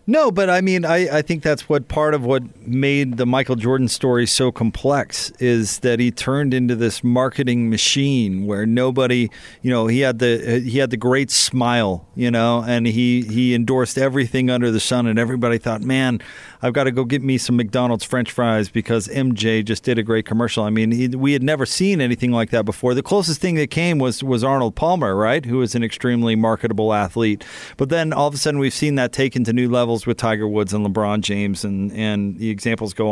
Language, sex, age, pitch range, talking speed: English, male, 40-59, 115-145 Hz, 220 wpm